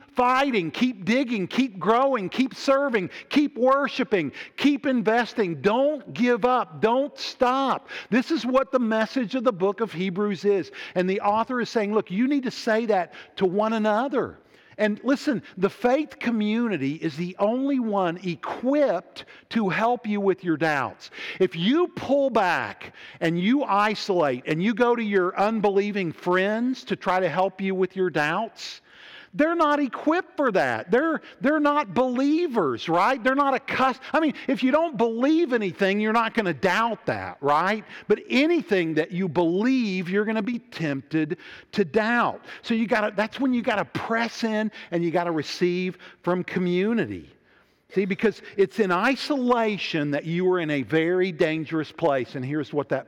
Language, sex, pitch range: English, male, 180-250 Hz